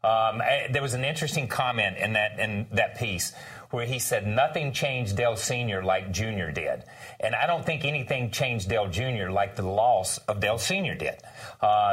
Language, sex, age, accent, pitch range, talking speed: English, male, 40-59, American, 110-140 Hz, 190 wpm